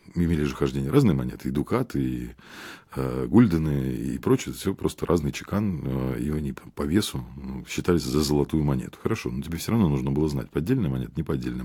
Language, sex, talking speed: Russian, male, 195 wpm